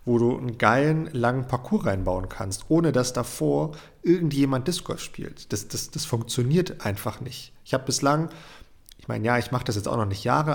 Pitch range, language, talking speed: 110-140 Hz, German, 195 wpm